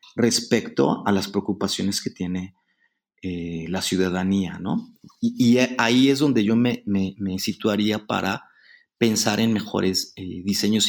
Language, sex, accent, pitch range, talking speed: Spanish, male, Mexican, 95-115 Hz, 145 wpm